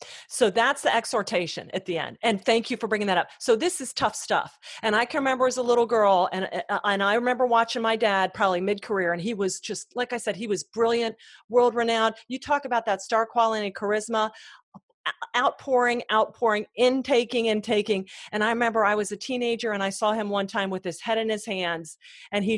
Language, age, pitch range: English, 40-59, 200-245 Hz